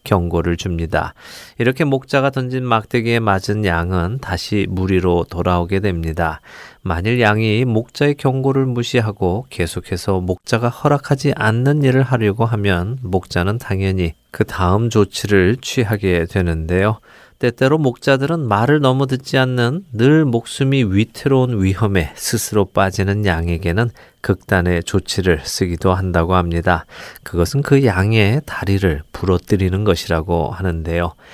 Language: Korean